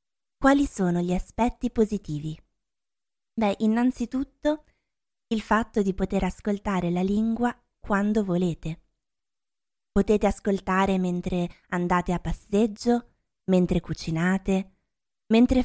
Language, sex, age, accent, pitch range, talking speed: Italian, female, 20-39, native, 175-220 Hz, 95 wpm